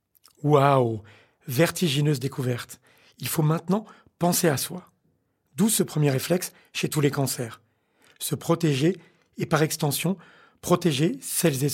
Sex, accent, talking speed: male, French, 130 wpm